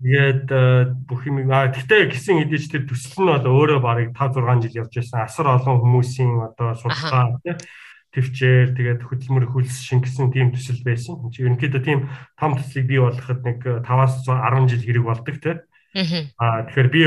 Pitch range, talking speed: 120-140 Hz, 115 wpm